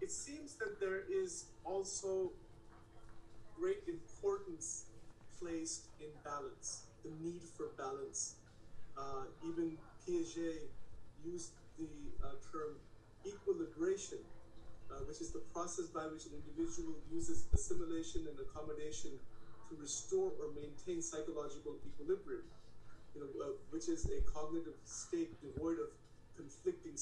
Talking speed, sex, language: 120 wpm, male, English